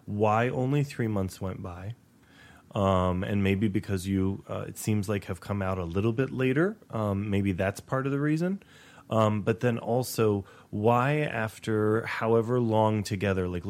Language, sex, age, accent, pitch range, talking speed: English, male, 30-49, American, 95-120 Hz, 170 wpm